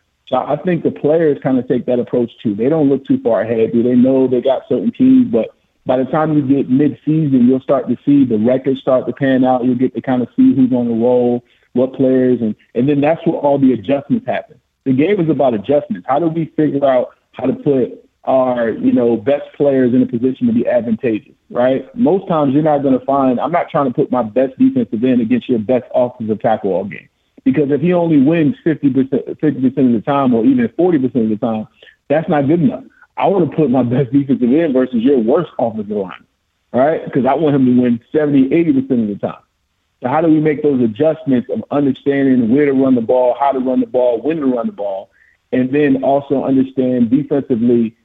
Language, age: English, 50-69